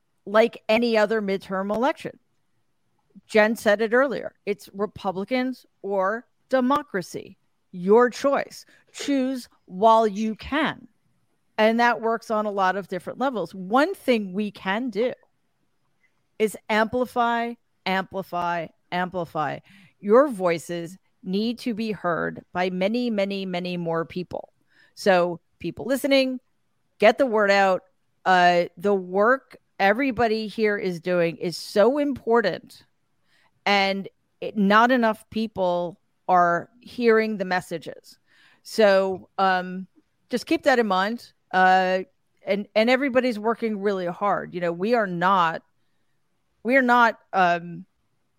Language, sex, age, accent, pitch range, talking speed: English, female, 40-59, American, 180-230 Hz, 120 wpm